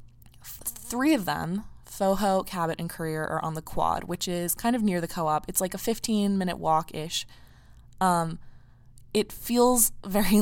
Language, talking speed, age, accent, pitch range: English, 150 wpm, 20-39, American, 155-195 Hz